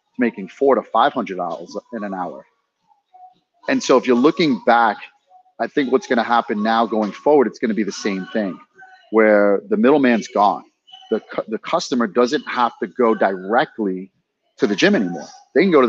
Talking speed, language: 185 wpm, English